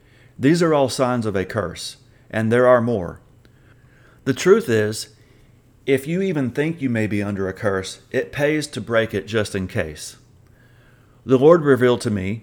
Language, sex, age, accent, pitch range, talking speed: English, male, 40-59, American, 105-125 Hz, 180 wpm